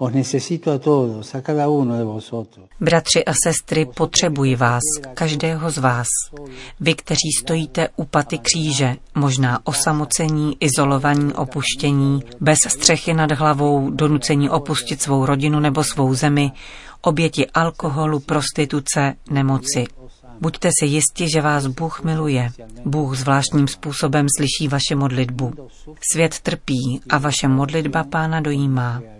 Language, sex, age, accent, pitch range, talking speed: Czech, female, 40-59, native, 135-160 Hz, 110 wpm